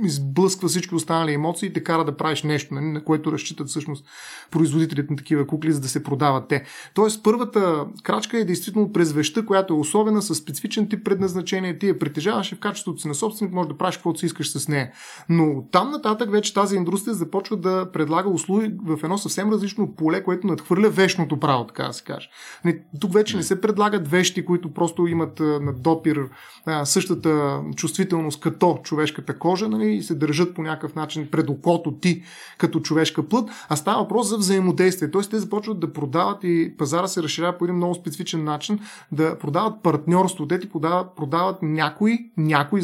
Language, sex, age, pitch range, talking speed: Bulgarian, male, 30-49, 155-190 Hz, 185 wpm